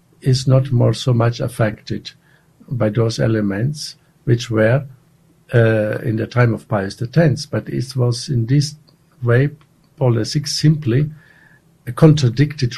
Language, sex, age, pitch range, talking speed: English, male, 60-79, 120-155 Hz, 140 wpm